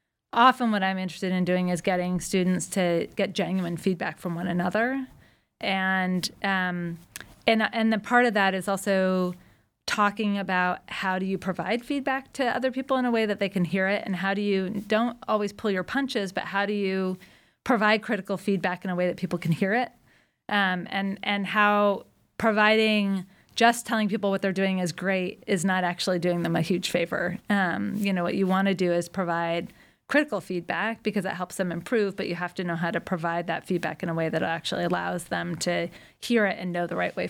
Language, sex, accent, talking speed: English, female, American, 210 wpm